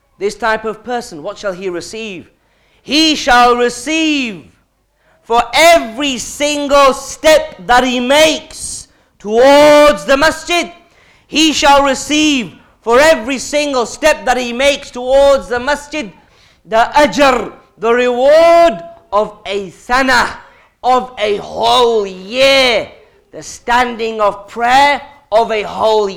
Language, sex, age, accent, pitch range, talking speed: English, male, 40-59, British, 220-285 Hz, 120 wpm